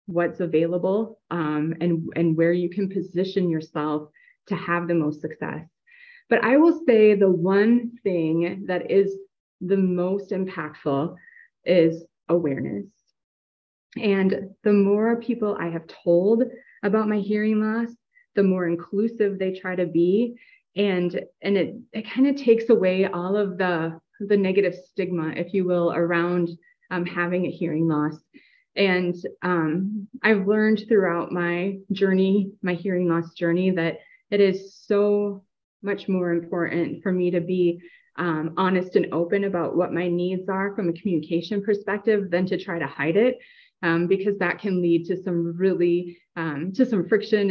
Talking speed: 155 wpm